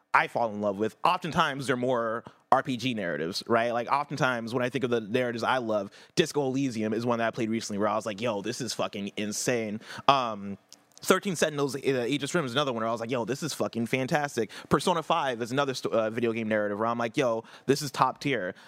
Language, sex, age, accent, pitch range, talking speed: English, male, 30-49, American, 110-135 Hz, 235 wpm